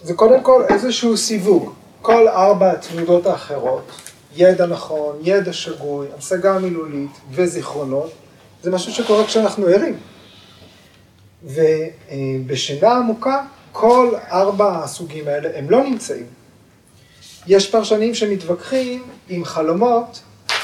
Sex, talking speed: male, 100 wpm